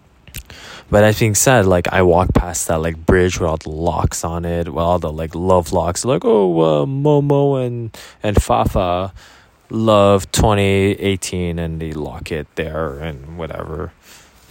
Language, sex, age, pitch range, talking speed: English, male, 20-39, 90-115 Hz, 160 wpm